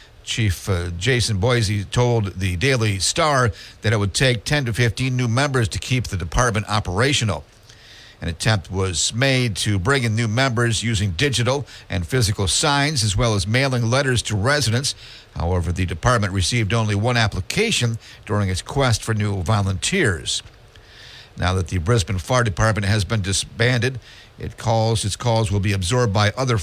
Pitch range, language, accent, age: 105-125 Hz, English, American, 50-69